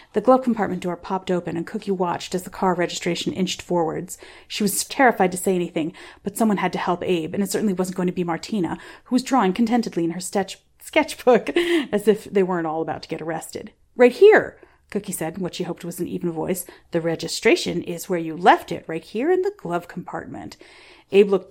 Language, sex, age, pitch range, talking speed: English, female, 40-59, 175-220 Hz, 220 wpm